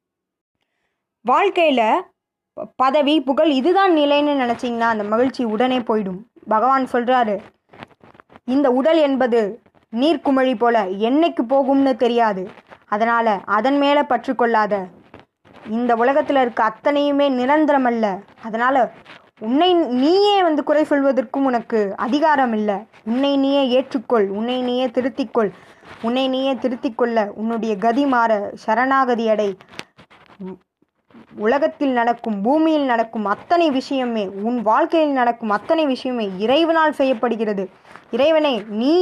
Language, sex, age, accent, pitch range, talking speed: Tamil, female, 20-39, native, 215-275 Hz, 105 wpm